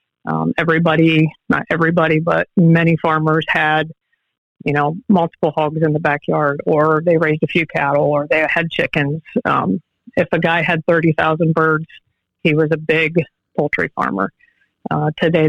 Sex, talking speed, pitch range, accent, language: female, 155 wpm, 160-190 Hz, American, English